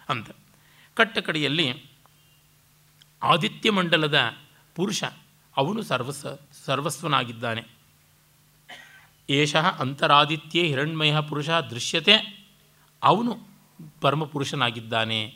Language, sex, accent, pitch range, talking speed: Kannada, male, native, 130-170 Hz, 60 wpm